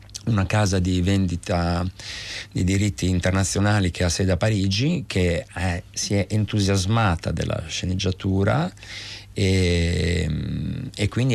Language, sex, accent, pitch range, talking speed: Italian, male, native, 95-110 Hz, 115 wpm